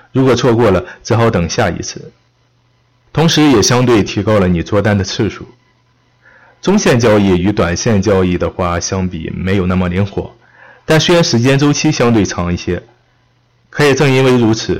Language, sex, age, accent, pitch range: Chinese, male, 20-39, native, 100-125 Hz